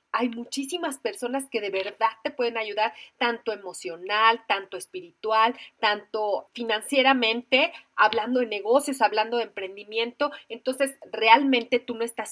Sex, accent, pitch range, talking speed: female, Mexican, 220-270 Hz, 125 wpm